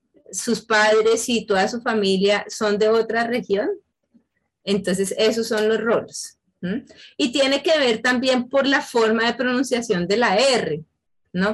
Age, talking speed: 30-49, 155 wpm